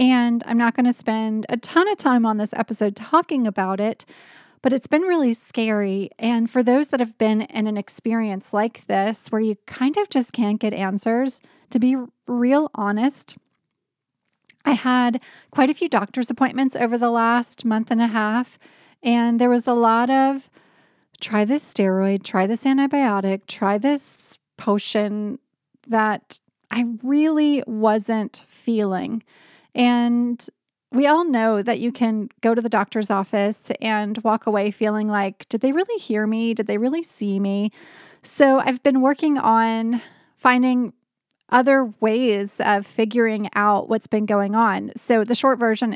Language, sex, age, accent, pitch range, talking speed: English, female, 30-49, American, 215-255 Hz, 160 wpm